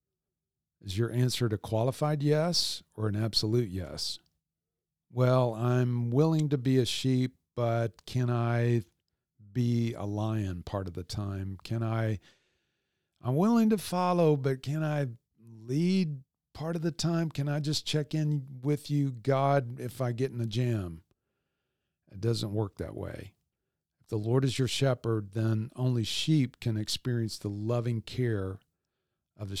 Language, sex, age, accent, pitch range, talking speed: English, male, 50-69, American, 105-130 Hz, 155 wpm